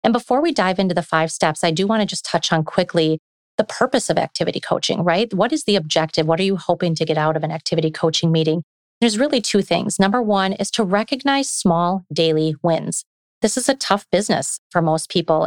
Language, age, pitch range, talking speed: English, 30-49, 165-205 Hz, 225 wpm